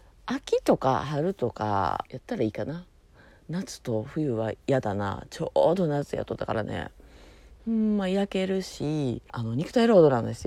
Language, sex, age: Japanese, female, 40-59